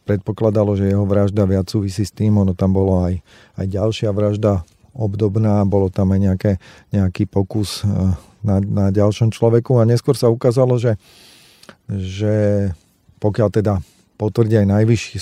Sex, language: male, Slovak